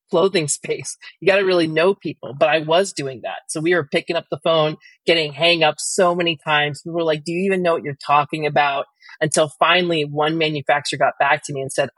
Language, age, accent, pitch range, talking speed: English, 30-49, American, 145-175 Hz, 235 wpm